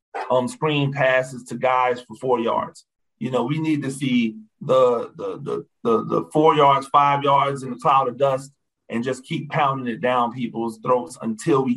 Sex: male